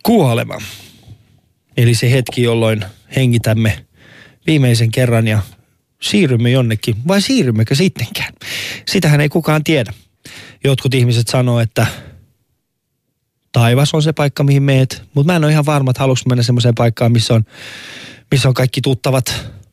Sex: male